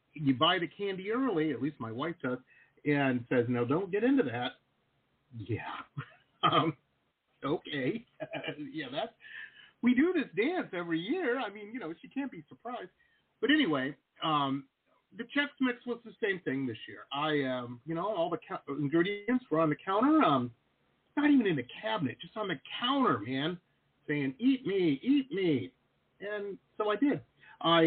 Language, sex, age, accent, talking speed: English, male, 50-69, American, 175 wpm